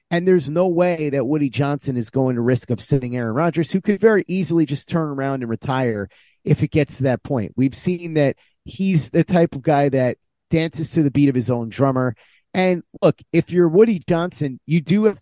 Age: 30-49